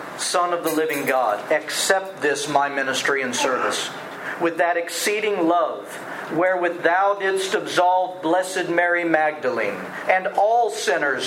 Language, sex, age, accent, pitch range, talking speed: English, male, 50-69, American, 155-185 Hz, 135 wpm